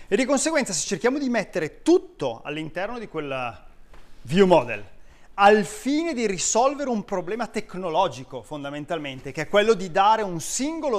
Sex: male